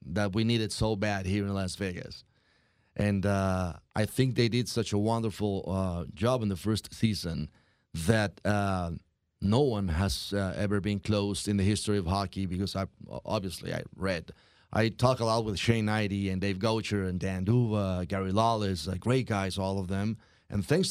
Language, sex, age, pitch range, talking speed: English, male, 30-49, 100-115 Hz, 190 wpm